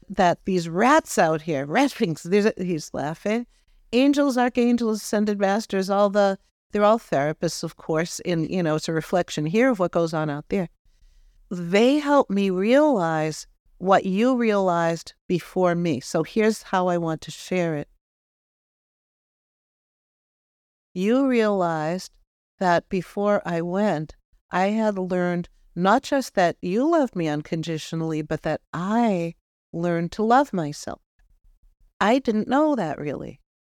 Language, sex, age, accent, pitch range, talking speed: English, female, 50-69, American, 170-225 Hz, 145 wpm